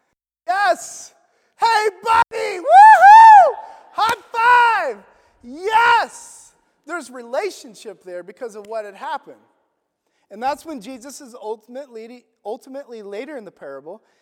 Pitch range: 160-235 Hz